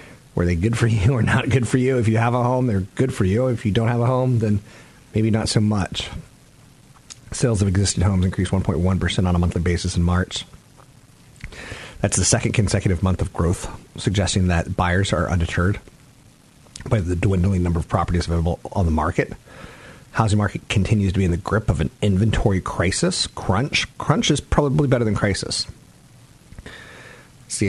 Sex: male